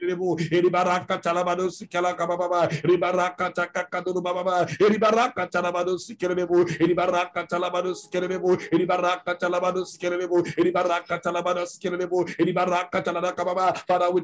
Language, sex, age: English, male, 60-79